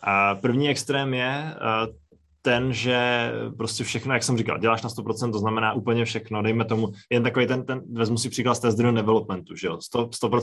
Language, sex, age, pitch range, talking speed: Czech, male, 20-39, 110-125 Hz, 185 wpm